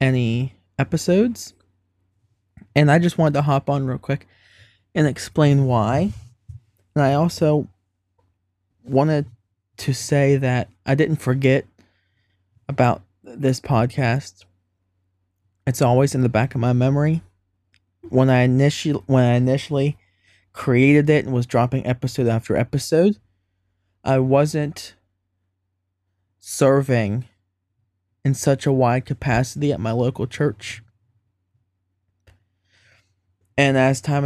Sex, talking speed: male, 110 wpm